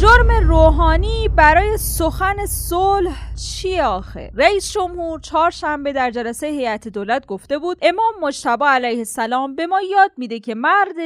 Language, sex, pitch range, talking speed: Persian, female, 245-345 Hz, 140 wpm